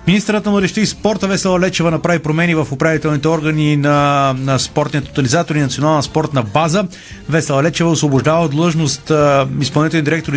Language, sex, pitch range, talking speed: Bulgarian, male, 140-160 Hz, 150 wpm